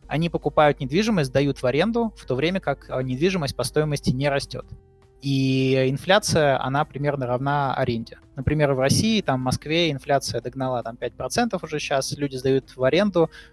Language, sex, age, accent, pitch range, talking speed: Russian, male, 20-39, native, 125-150 Hz, 165 wpm